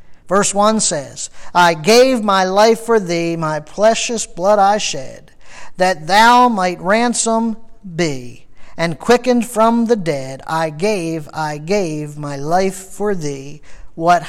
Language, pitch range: English, 160-230 Hz